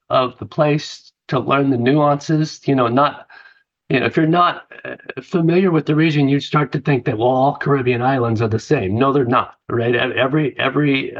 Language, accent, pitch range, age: English, American, 115-145 Hz, 50-69